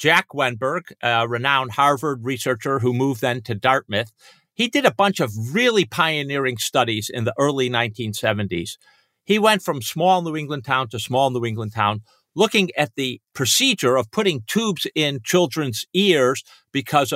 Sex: male